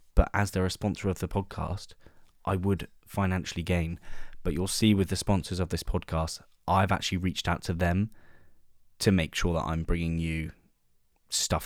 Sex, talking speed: male, 180 wpm